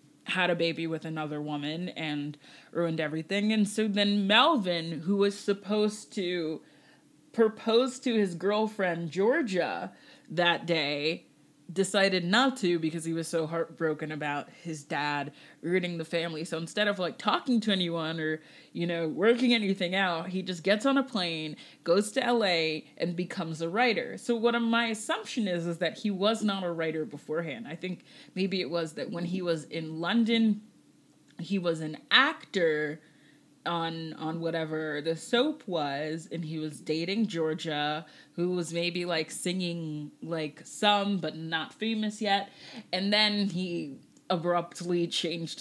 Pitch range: 160-200 Hz